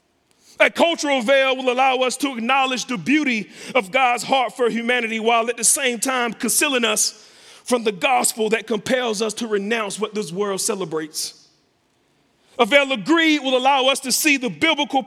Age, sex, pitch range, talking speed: 40-59, male, 190-255 Hz, 180 wpm